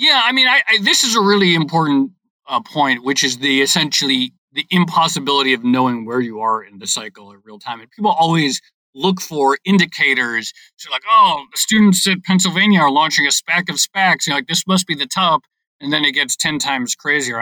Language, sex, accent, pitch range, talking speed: English, male, American, 130-185 Hz, 215 wpm